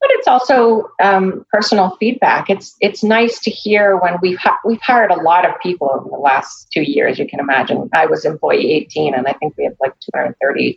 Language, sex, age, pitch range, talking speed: English, female, 40-59, 165-210 Hz, 215 wpm